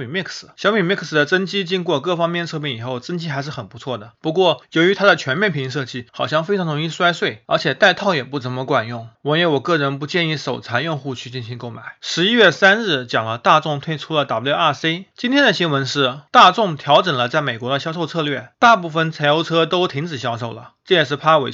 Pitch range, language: 130-175 Hz, Chinese